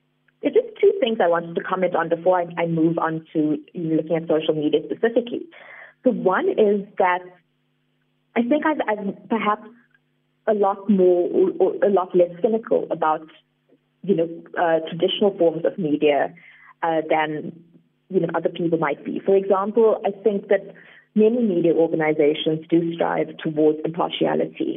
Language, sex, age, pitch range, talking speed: English, female, 30-49, 165-200 Hz, 160 wpm